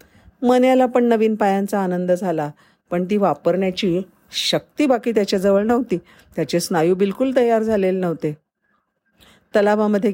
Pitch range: 160-215 Hz